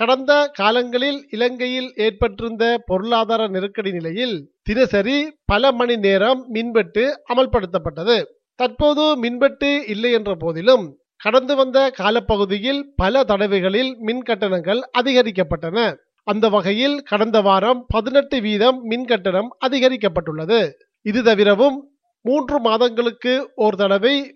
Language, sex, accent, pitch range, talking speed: Tamil, male, native, 210-260 Hz, 100 wpm